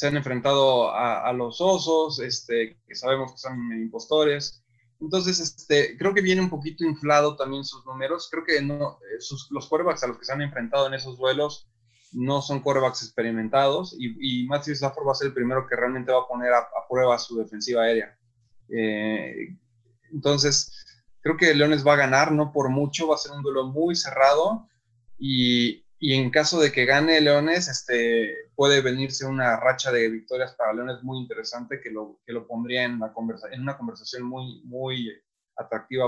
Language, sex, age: Spanish, male, 20-39